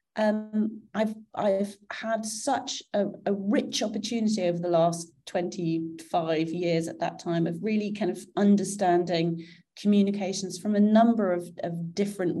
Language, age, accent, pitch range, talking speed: English, 30-49, British, 180-225 Hz, 145 wpm